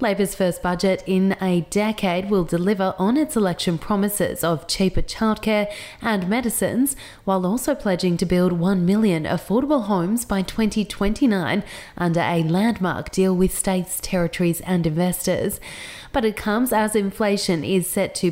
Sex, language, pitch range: female, English, 170-215 Hz